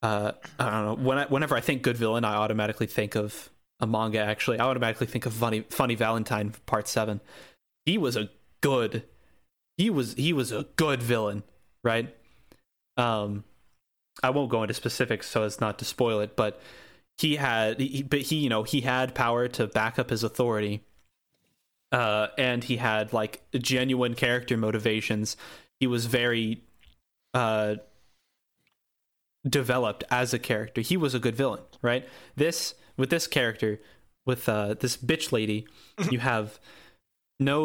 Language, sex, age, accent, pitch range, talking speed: English, male, 20-39, American, 110-135 Hz, 160 wpm